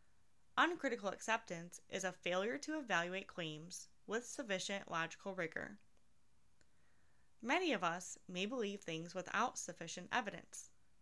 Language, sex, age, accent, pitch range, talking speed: English, female, 20-39, American, 175-230 Hz, 120 wpm